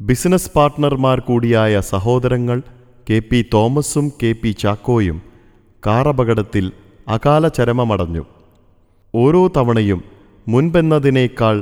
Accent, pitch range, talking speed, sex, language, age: native, 100-135 Hz, 85 wpm, male, Malayalam, 30-49